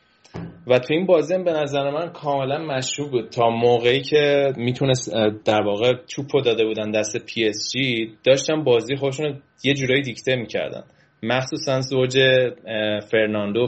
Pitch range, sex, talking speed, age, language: 115-135 Hz, male, 150 wpm, 20-39, Persian